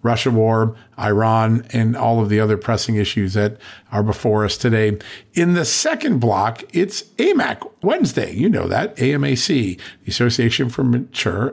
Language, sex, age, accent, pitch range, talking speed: English, male, 50-69, American, 110-135 Hz, 155 wpm